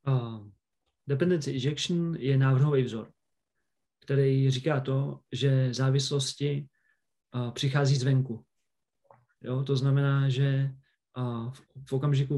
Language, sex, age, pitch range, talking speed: Czech, male, 40-59, 130-145 Hz, 105 wpm